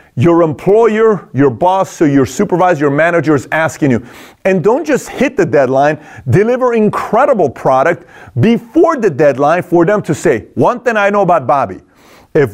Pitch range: 145-205 Hz